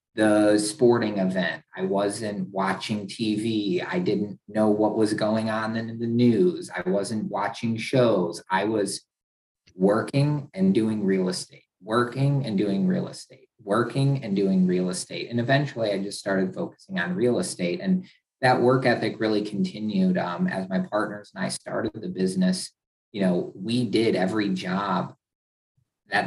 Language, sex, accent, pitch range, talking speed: English, male, American, 95-115 Hz, 160 wpm